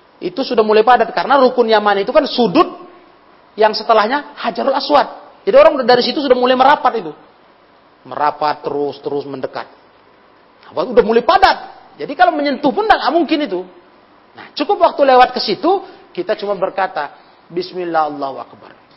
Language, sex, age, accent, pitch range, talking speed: Indonesian, male, 40-59, native, 175-275 Hz, 150 wpm